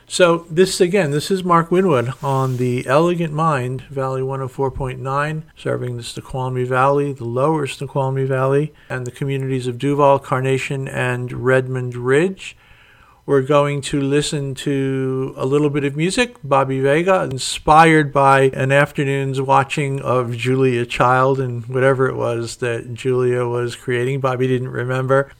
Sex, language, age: male, English, 50-69